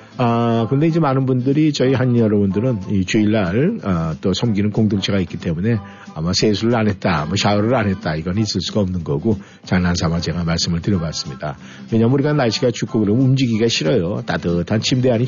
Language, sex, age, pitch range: Korean, male, 50-69, 95-125 Hz